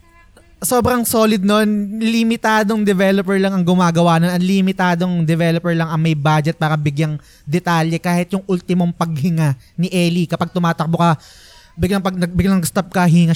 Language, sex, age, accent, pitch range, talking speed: Filipino, male, 20-39, native, 150-185 Hz, 155 wpm